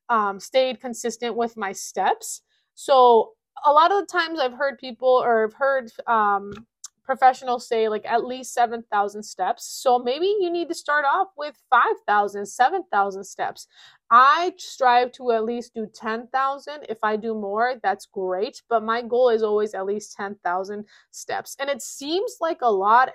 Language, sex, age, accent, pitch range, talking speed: English, female, 20-39, American, 220-280 Hz, 170 wpm